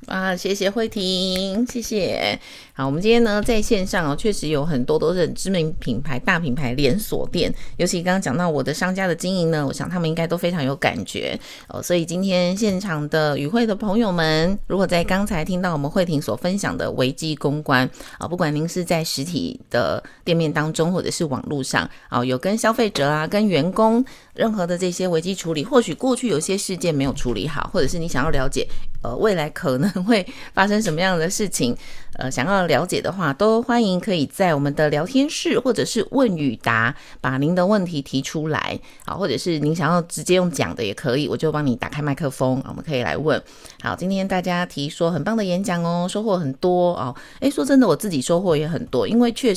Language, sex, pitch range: Chinese, female, 150-195 Hz